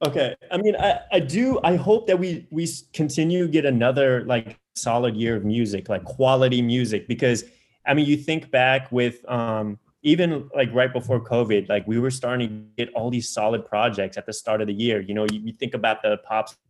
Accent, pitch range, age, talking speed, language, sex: American, 110-130 Hz, 20-39, 215 wpm, English, male